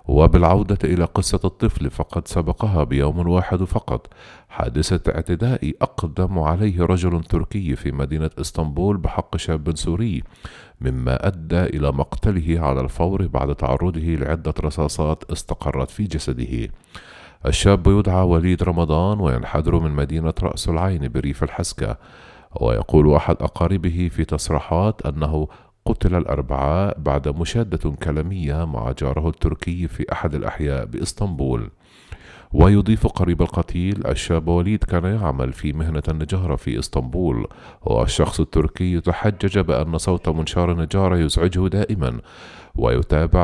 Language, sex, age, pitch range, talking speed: Arabic, male, 50-69, 75-90 Hz, 120 wpm